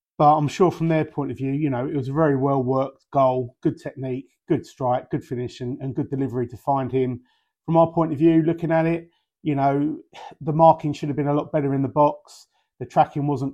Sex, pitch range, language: male, 125-155 Hz, English